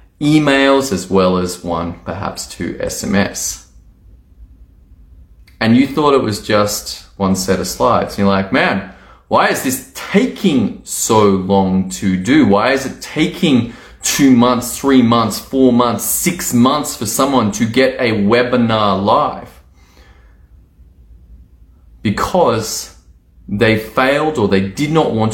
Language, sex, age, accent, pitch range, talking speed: English, male, 20-39, Australian, 95-130 Hz, 135 wpm